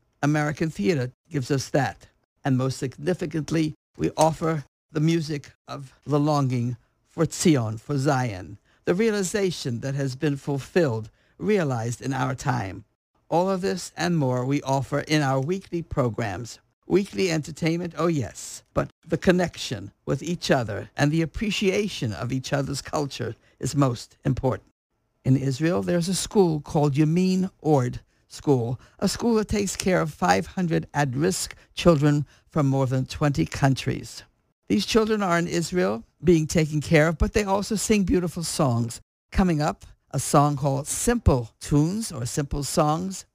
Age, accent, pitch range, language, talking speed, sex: 60-79, American, 125-170 Hz, English, 150 wpm, male